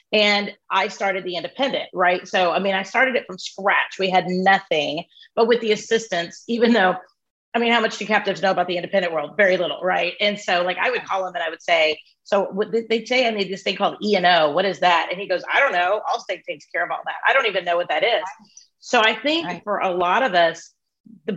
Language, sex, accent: English, female, American